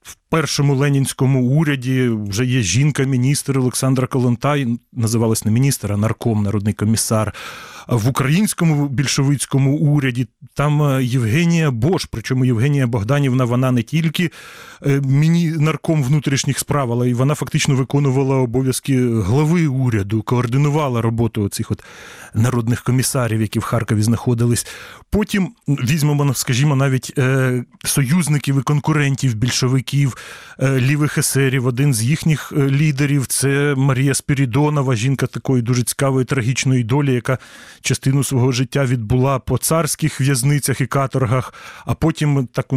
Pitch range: 125-145 Hz